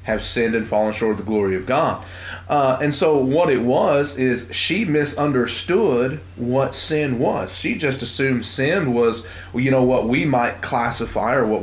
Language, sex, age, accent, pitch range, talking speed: English, male, 30-49, American, 105-130 Hz, 180 wpm